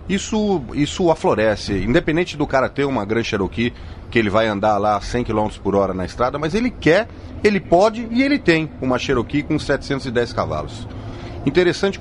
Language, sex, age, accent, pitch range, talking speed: Portuguese, male, 40-59, Brazilian, 100-150 Hz, 175 wpm